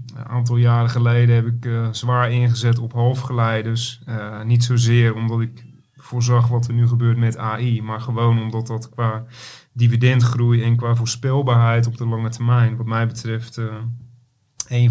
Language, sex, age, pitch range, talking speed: Dutch, male, 40-59, 115-120 Hz, 165 wpm